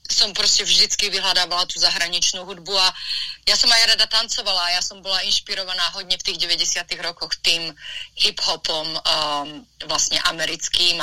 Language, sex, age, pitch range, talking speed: Slovak, female, 30-49, 170-215 Hz, 150 wpm